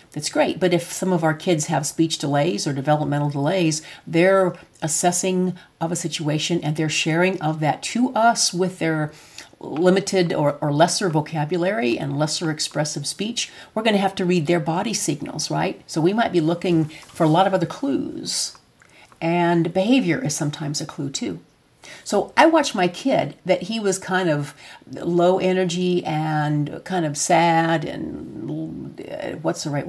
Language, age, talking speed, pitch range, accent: English, 50-69, 170 wpm, 155-190 Hz, American